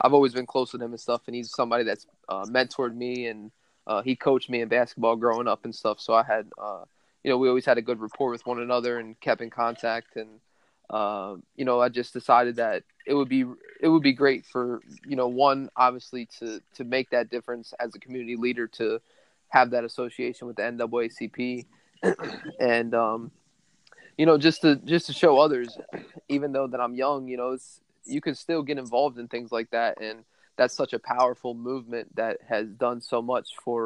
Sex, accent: male, American